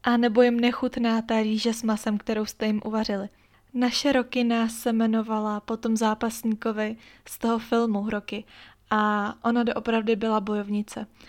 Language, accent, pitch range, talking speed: Czech, native, 215-235 Hz, 145 wpm